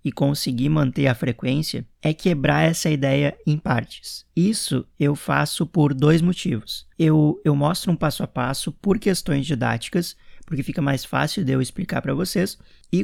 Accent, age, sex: Brazilian, 20-39, male